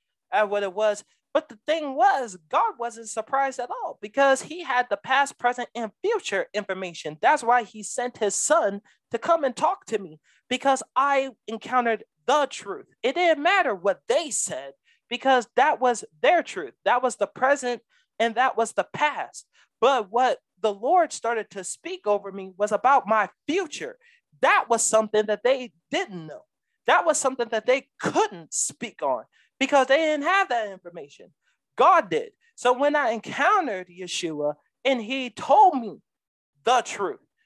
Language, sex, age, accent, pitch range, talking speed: English, male, 30-49, American, 205-270 Hz, 170 wpm